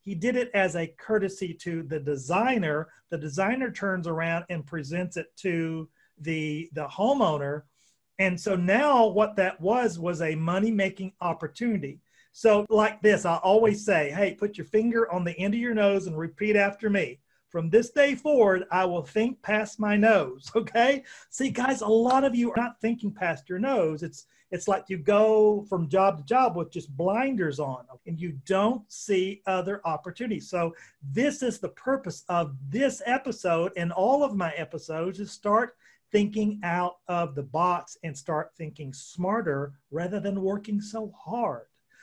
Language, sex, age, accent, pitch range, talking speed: English, male, 40-59, American, 165-215 Hz, 175 wpm